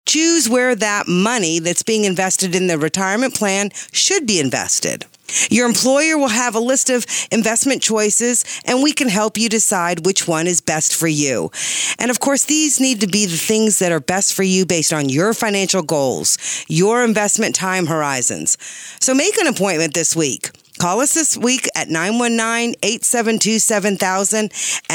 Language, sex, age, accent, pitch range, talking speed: English, female, 40-59, American, 170-240 Hz, 170 wpm